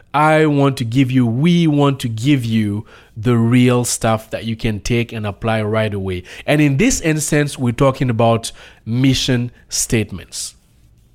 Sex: male